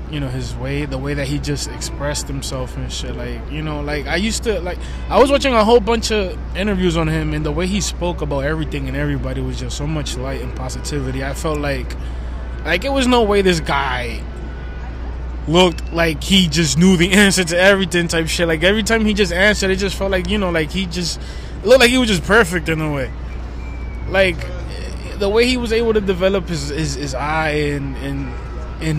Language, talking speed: English, 225 wpm